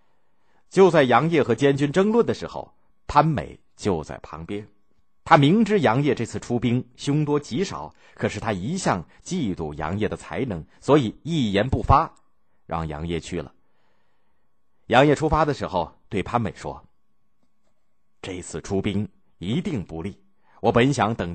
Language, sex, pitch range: Chinese, male, 90-135 Hz